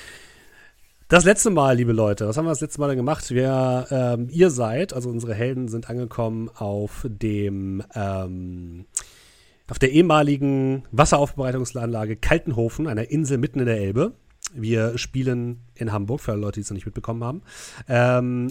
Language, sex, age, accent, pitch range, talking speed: German, male, 40-59, German, 115-140 Hz, 160 wpm